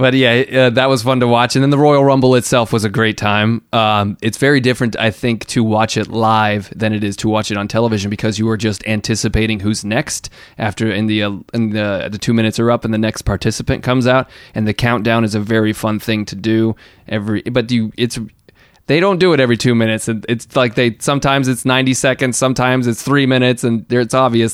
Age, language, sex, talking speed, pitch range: 30-49, English, male, 235 wpm, 105-130 Hz